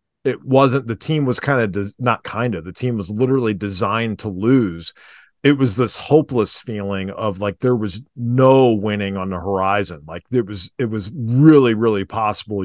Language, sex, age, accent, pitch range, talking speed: English, male, 40-59, American, 100-130 Hz, 190 wpm